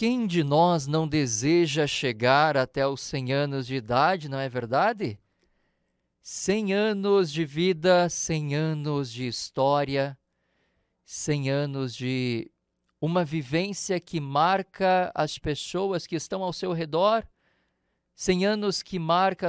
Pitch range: 130-185 Hz